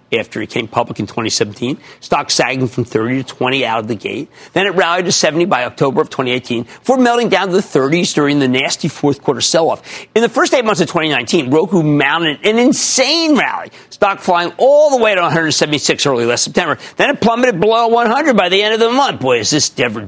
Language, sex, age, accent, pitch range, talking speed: English, male, 50-69, American, 140-220 Hz, 225 wpm